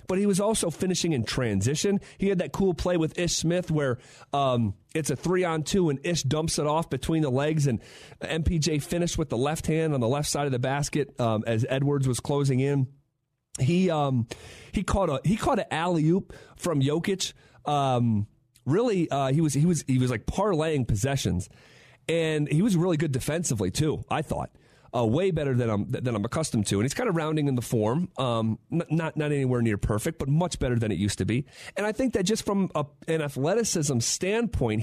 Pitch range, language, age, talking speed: 125-165 Hz, English, 40-59, 210 wpm